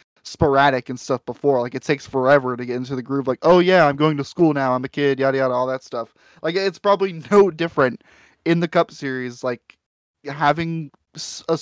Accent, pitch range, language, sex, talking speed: American, 130-160 Hz, English, male, 210 wpm